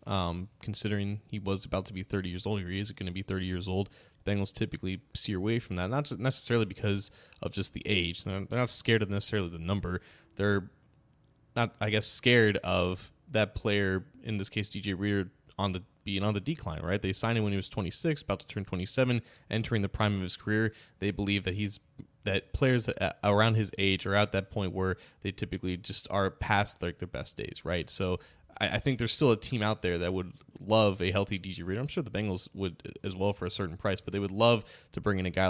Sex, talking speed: male, 230 wpm